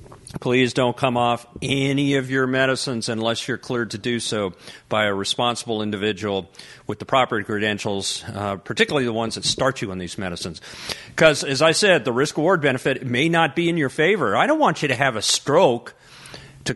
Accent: American